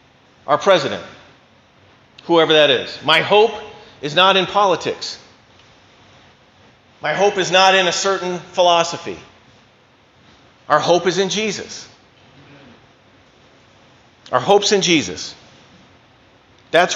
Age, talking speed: 40-59, 105 wpm